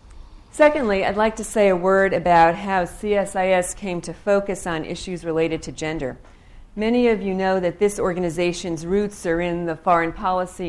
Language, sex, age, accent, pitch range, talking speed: English, female, 50-69, American, 160-190 Hz, 175 wpm